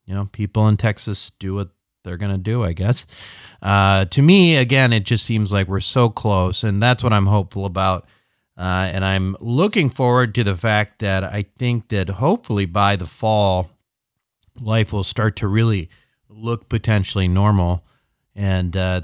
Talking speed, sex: 175 wpm, male